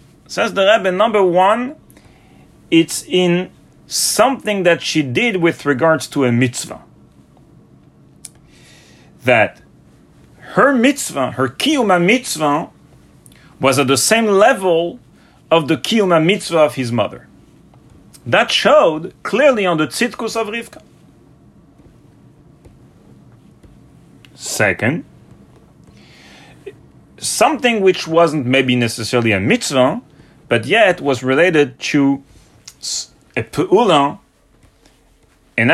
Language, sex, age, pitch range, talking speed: English, male, 40-59, 135-215 Hz, 95 wpm